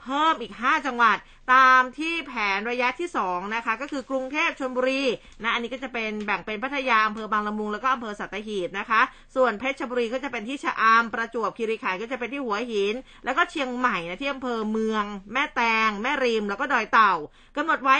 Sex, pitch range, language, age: female, 210-270 Hz, Thai, 20-39